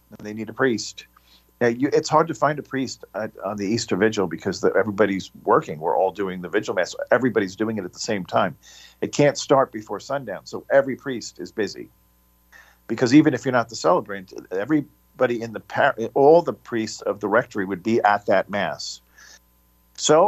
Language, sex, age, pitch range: English, male, 50-69, 90-135 Hz